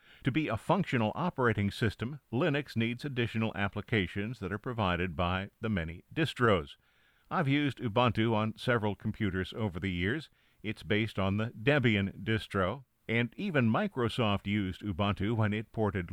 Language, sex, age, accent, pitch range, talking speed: English, male, 50-69, American, 100-125 Hz, 150 wpm